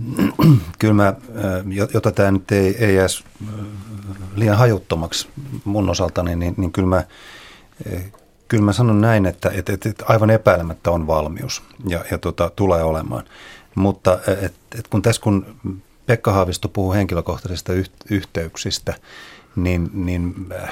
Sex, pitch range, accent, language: male, 85-105 Hz, native, Finnish